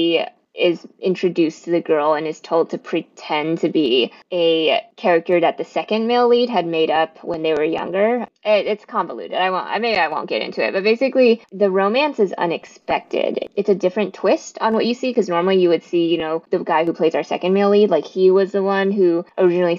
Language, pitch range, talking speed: English, 165-215 Hz, 225 wpm